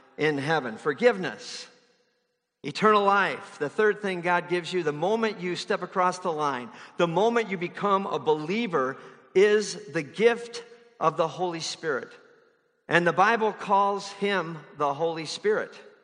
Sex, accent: male, American